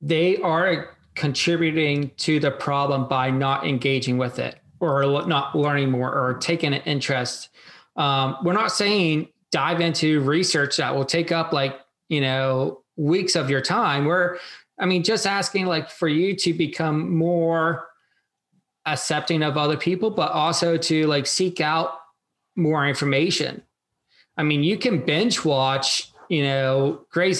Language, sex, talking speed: English, male, 150 wpm